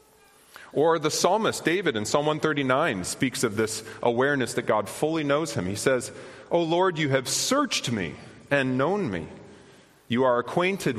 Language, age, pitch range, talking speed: English, 30-49, 115-160 Hz, 165 wpm